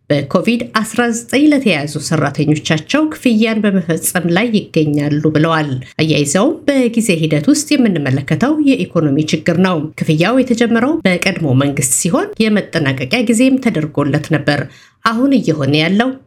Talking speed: 105 wpm